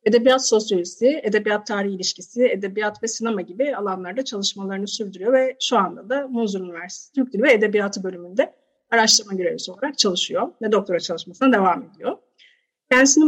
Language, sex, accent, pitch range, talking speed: Turkish, female, native, 200-250 Hz, 150 wpm